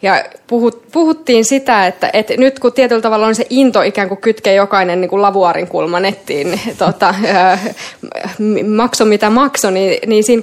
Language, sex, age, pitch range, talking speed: Finnish, female, 20-39, 190-235 Hz, 165 wpm